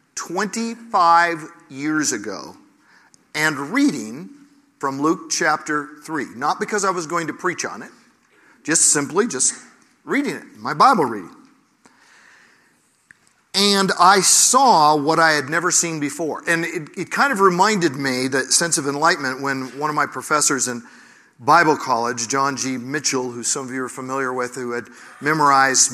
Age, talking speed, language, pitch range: 50-69, 155 wpm, English, 135-180 Hz